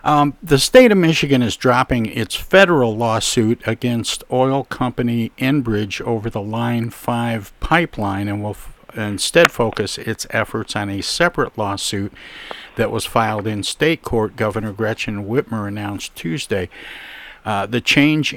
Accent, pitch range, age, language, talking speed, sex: American, 105-125 Hz, 50-69, English, 140 wpm, male